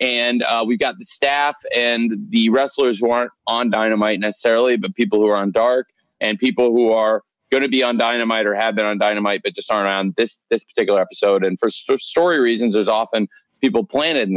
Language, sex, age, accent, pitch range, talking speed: English, male, 30-49, American, 100-120 Hz, 215 wpm